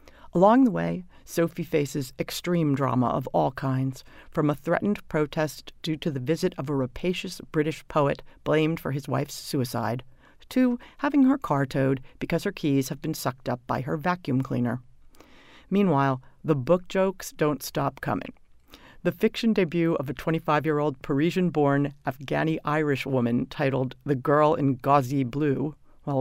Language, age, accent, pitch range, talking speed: English, 50-69, American, 140-175 Hz, 155 wpm